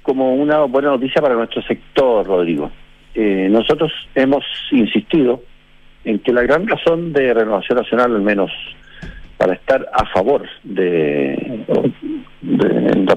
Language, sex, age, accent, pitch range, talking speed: Spanish, male, 50-69, Argentinian, 105-145 Hz, 135 wpm